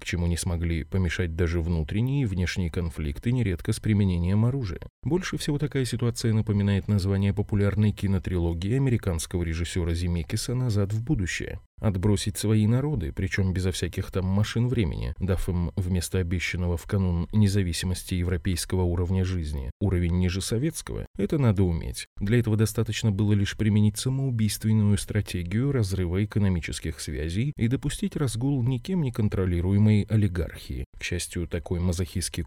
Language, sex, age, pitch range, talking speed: Russian, male, 20-39, 90-115 Hz, 135 wpm